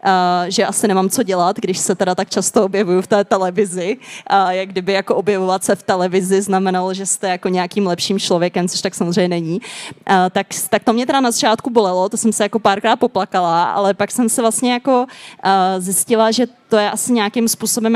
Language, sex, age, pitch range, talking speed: Czech, female, 20-39, 185-215 Hz, 215 wpm